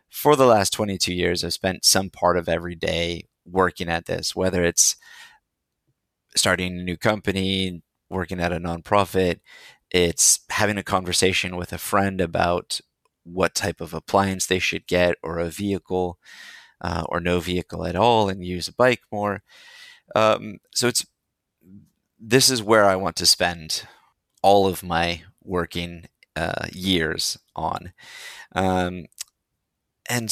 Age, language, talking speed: 30-49, English, 145 wpm